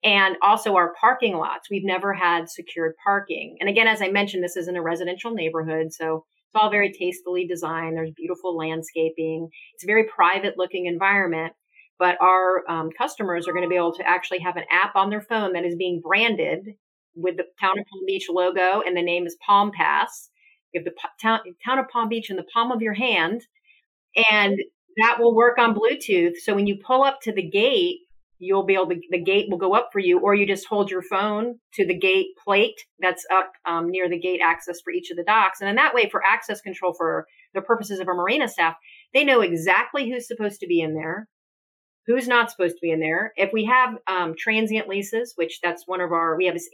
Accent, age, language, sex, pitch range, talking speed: American, 40-59, English, female, 175-230 Hz, 225 wpm